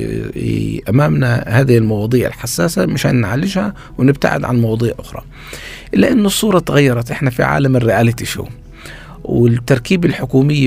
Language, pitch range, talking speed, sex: Arabic, 110-140 Hz, 120 wpm, male